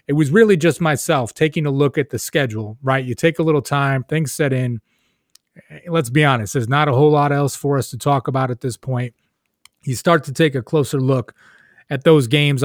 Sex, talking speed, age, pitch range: male, 225 wpm, 30-49, 125-150 Hz